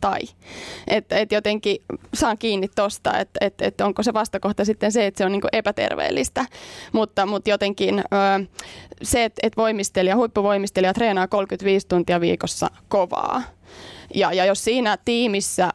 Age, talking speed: 20-39, 145 wpm